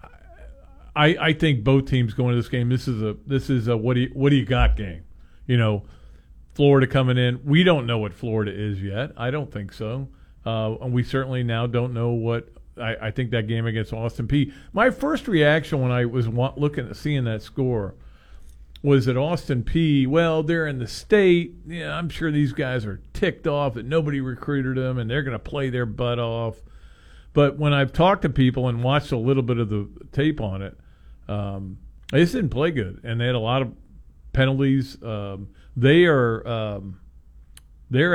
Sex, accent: male, American